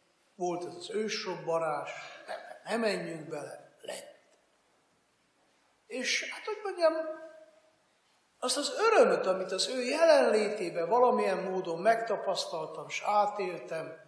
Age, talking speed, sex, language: 60-79, 105 wpm, male, Hungarian